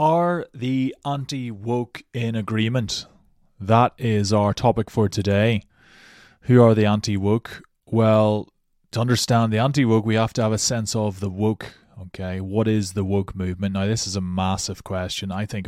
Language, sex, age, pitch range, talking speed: English, male, 20-39, 95-110 Hz, 165 wpm